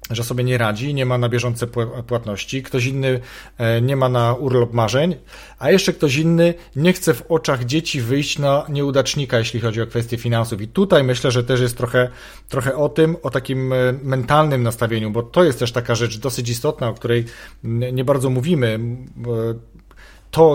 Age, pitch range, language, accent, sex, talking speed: 40-59, 120-145 Hz, Polish, native, male, 180 wpm